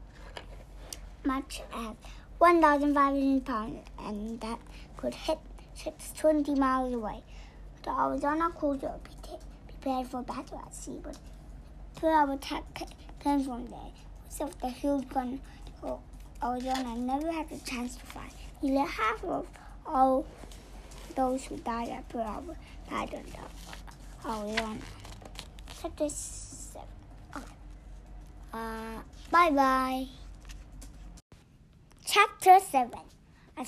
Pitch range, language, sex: 255-305 Hz, English, male